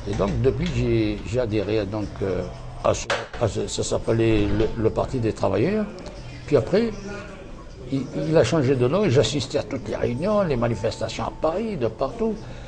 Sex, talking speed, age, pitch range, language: male, 180 wpm, 60-79, 105-135 Hz, French